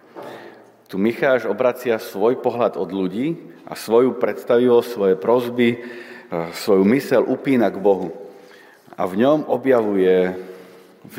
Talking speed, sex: 120 wpm, male